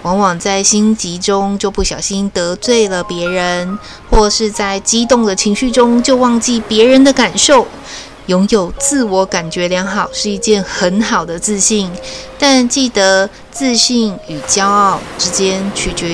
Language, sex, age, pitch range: Chinese, female, 20-39, 185-235 Hz